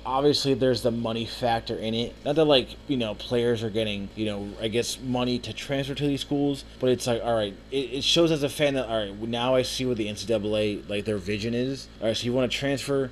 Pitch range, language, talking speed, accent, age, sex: 105-130 Hz, English, 255 wpm, American, 20-39, male